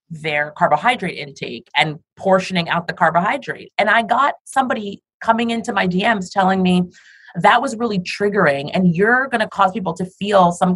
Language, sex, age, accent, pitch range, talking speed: English, female, 30-49, American, 185-265 Hz, 175 wpm